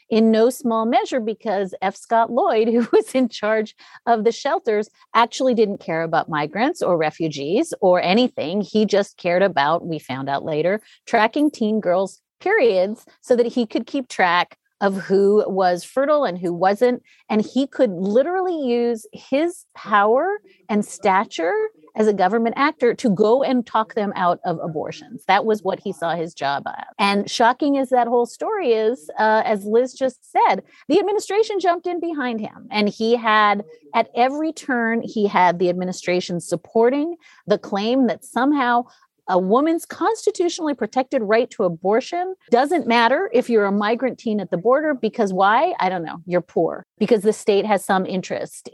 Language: English